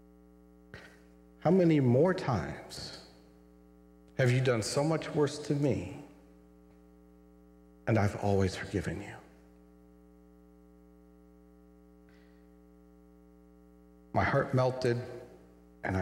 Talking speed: 80 wpm